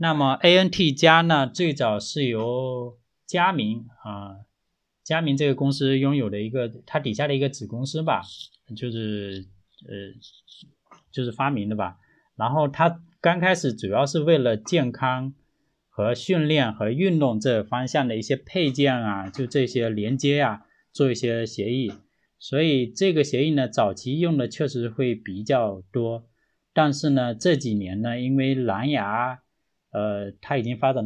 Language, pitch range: Chinese, 110-150 Hz